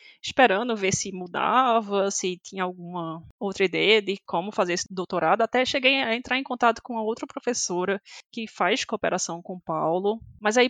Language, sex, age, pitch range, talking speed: Portuguese, female, 20-39, 190-255 Hz, 180 wpm